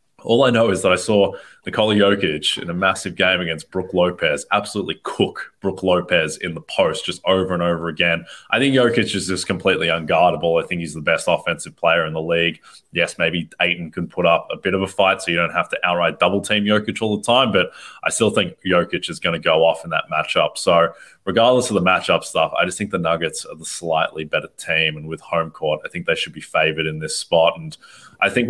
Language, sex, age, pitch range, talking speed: English, male, 20-39, 80-100 Hz, 235 wpm